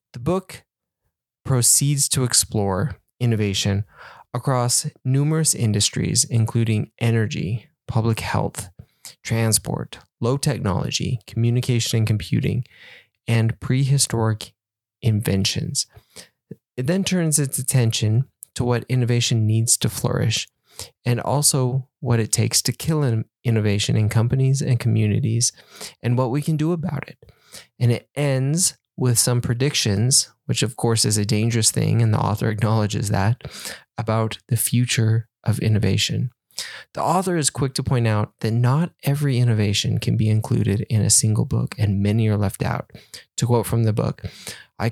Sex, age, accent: male, 20-39, American